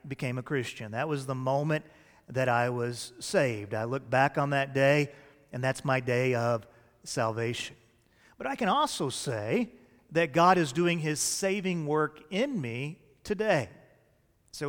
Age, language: 40-59, English